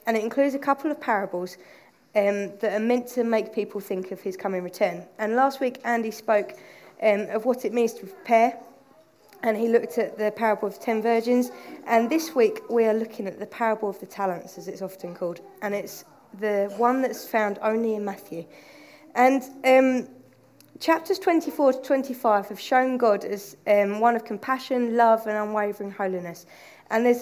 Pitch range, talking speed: 200-245 Hz, 190 wpm